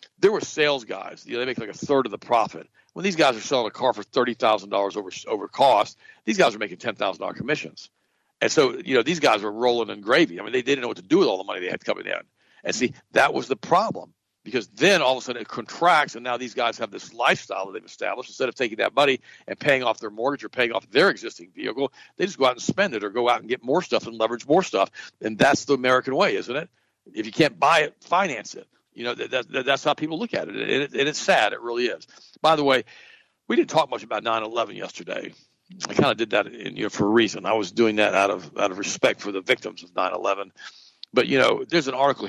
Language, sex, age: English, male, 60-79